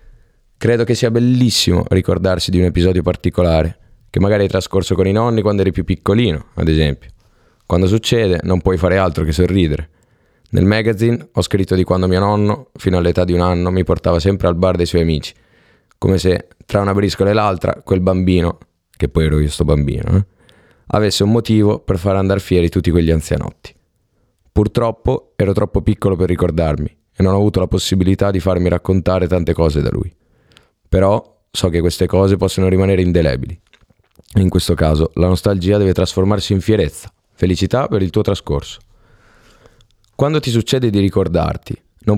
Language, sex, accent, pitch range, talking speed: Italian, male, native, 90-110 Hz, 175 wpm